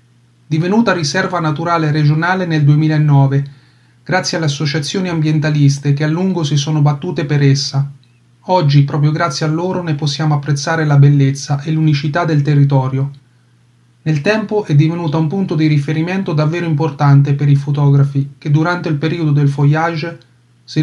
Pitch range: 140-165 Hz